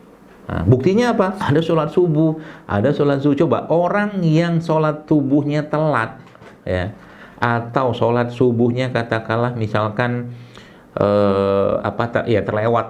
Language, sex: Indonesian, male